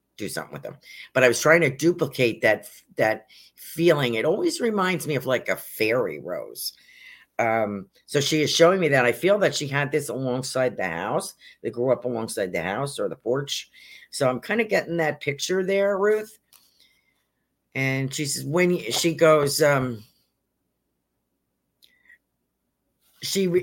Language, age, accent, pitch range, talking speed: English, 50-69, American, 125-175 Hz, 165 wpm